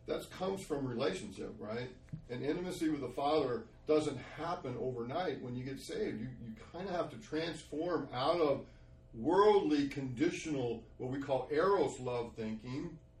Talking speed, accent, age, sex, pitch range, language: 155 wpm, American, 50-69, male, 125-165 Hz, English